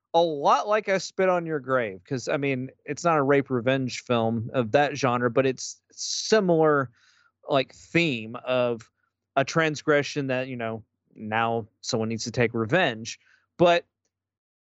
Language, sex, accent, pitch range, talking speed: English, male, American, 125-165 Hz, 155 wpm